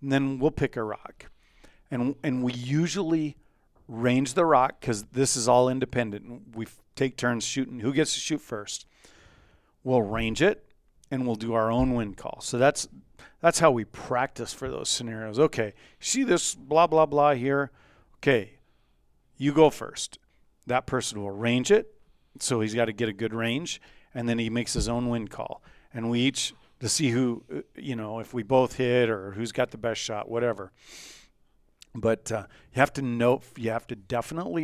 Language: English